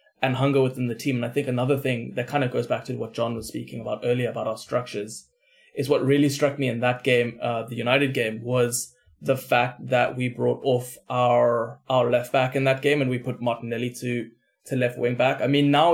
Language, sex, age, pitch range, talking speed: English, male, 20-39, 120-135 Hz, 235 wpm